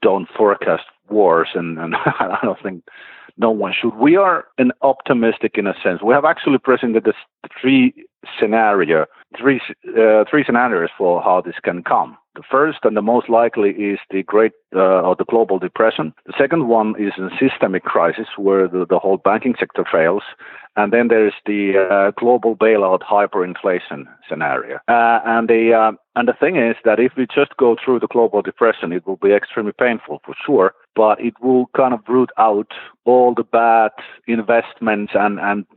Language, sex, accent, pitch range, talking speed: English, male, Finnish, 100-120 Hz, 180 wpm